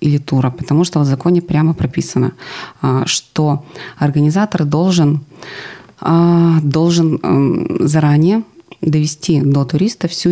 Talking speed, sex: 100 wpm, female